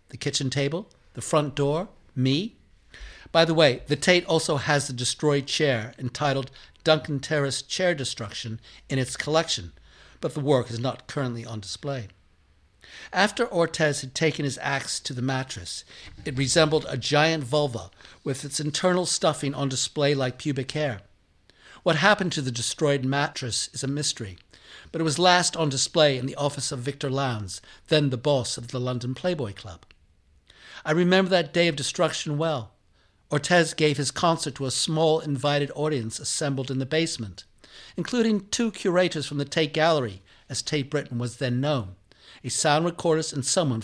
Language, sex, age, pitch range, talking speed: English, male, 60-79, 125-160 Hz, 170 wpm